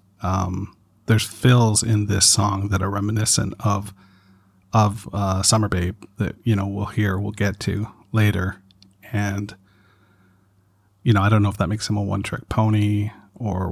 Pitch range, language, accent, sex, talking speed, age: 100-115 Hz, English, American, male, 165 wpm, 40-59